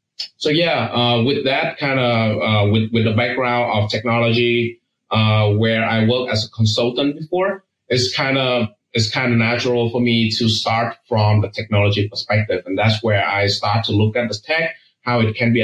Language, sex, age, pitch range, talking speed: English, male, 20-39, 110-125 Hz, 190 wpm